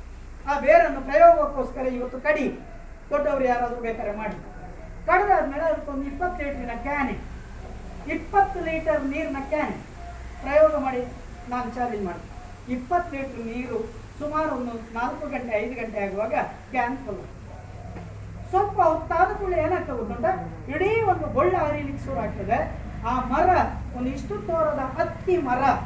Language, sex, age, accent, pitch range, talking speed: Kannada, female, 40-59, native, 235-330 Hz, 110 wpm